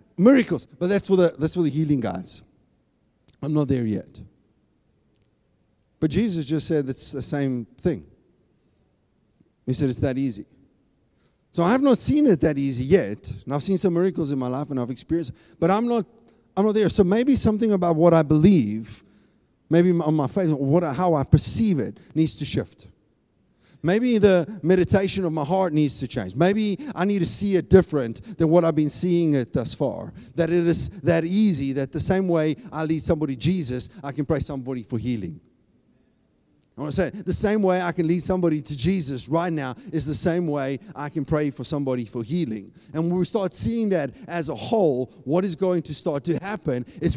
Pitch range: 140-185 Hz